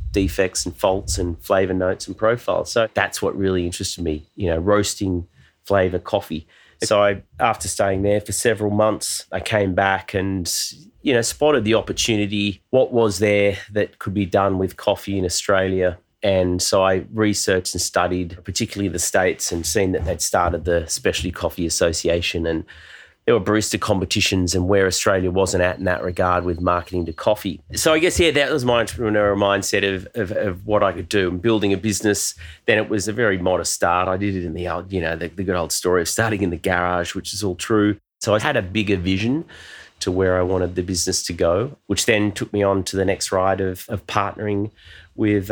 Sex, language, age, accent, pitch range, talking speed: male, English, 30-49, Australian, 90-105 Hz, 210 wpm